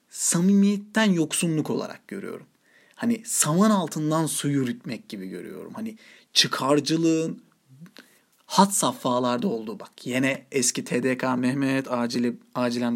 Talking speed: 105 wpm